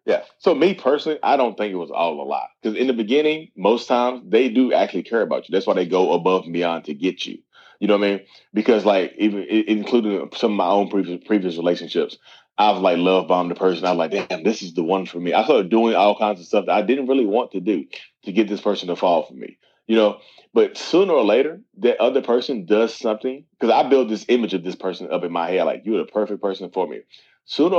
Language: English